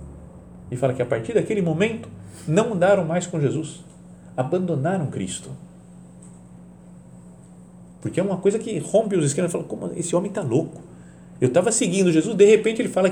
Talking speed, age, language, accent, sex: 170 wpm, 40-59, Portuguese, Brazilian, male